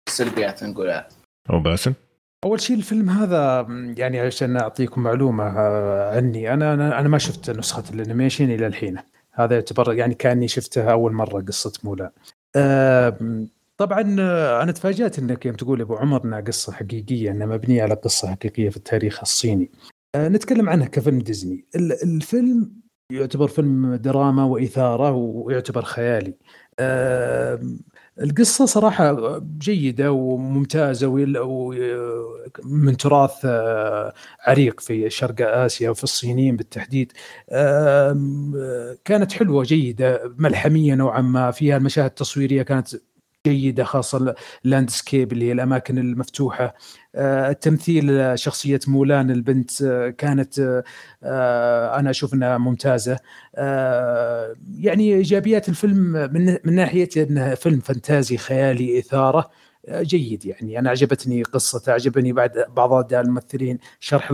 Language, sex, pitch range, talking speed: Arabic, male, 120-145 Hz, 125 wpm